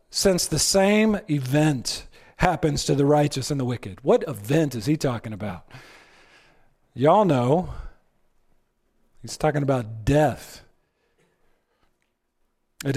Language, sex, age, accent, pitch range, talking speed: English, male, 40-59, American, 160-265 Hz, 110 wpm